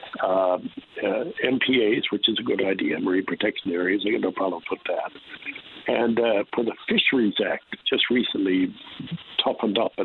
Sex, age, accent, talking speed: male, 60-79, American, 180 wpm